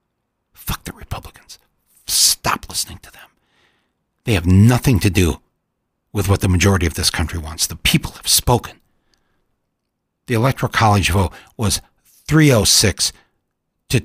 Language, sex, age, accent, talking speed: English, male, 60-79, American, 130 wpm